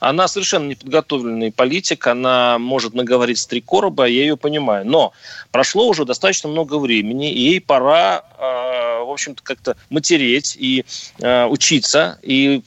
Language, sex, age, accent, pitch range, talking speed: Russian, male, 30-49, native, 125-160 Hz, 145 wpm